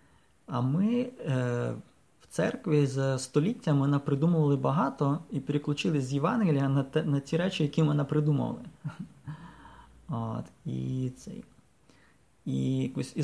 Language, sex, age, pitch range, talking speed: English, male, 20-39, 125-155 Hz, 120 wpm